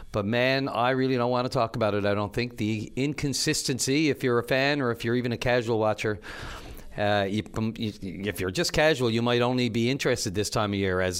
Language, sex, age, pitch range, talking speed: English, male, 40-59, 105-130 Hz, 220 wpm